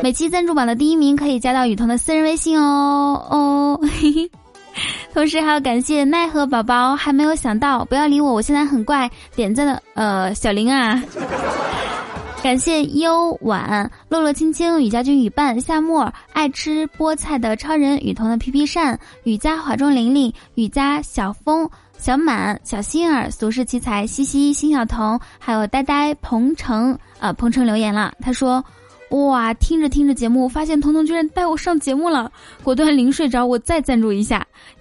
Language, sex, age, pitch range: Chinese, female, 10-29, 240-300 Hz